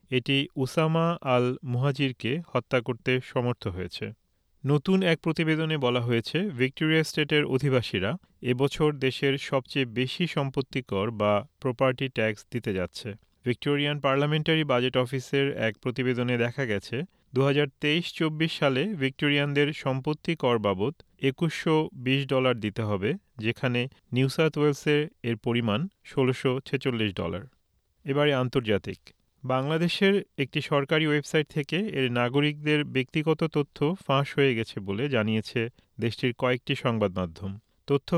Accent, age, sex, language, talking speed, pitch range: native, 40-59, male, Bengali, 105 wpm, 125-150 Hz